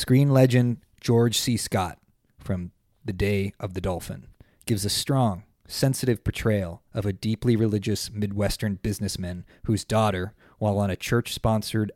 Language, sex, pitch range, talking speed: English, male, 100-115 Hz, 140 wpm